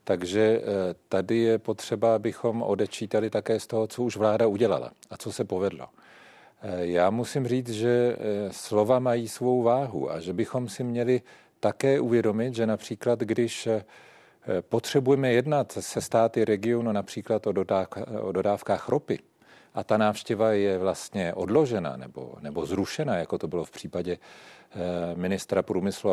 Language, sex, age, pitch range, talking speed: Czech, male, 40-59, 100-125 Hz, 140 wpm